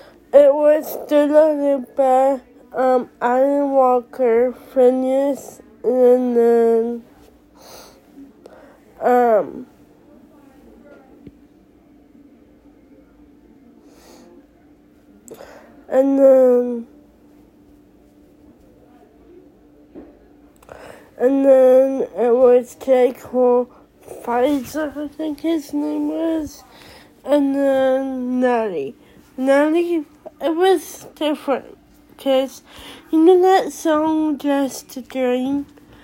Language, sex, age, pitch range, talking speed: English, female, 20-39, 250-295 Hz, 65 wpm